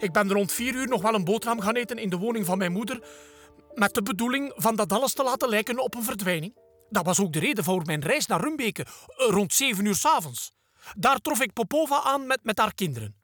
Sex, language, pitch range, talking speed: male, Dutch, 160-250 Hz, 240 wpm